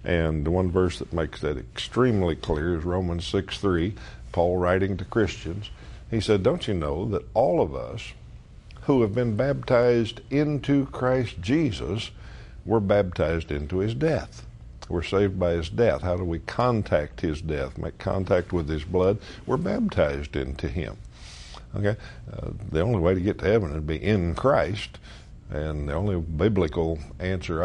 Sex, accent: male, American